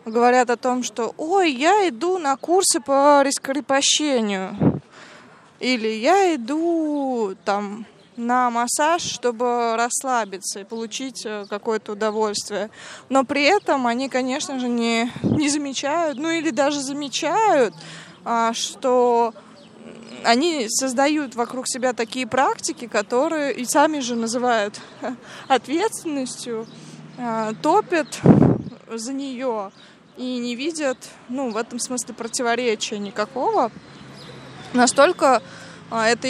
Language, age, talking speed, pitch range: Russian, 20-39, 105 wpm, 230-290 Hz